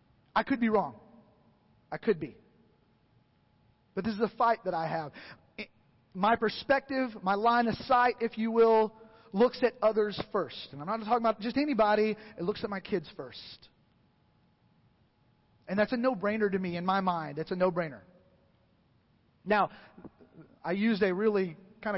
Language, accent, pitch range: English, American, 185-220 Hz